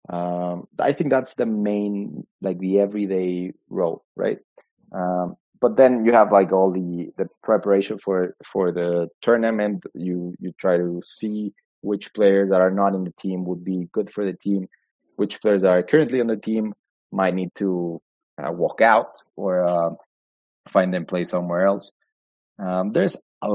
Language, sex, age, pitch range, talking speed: English, male, 20-39, 90-105 Hz, 175 wpm